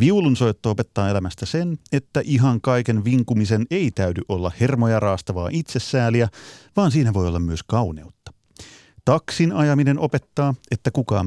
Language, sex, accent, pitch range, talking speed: Finnish, male, native, 100-135 Hz, 135 wpm